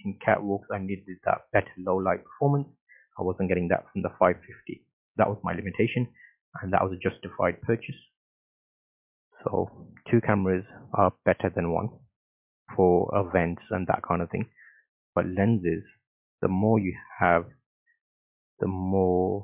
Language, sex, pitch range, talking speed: English, male, 95-115 Hz, 145 wpm